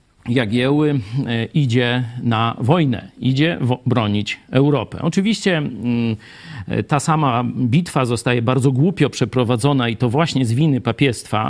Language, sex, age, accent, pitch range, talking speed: Polish, male, 50-69, native, 120-155 Hz, 115 wpm